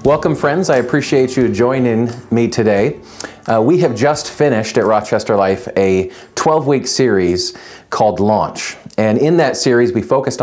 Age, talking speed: 40-59, 155 wpm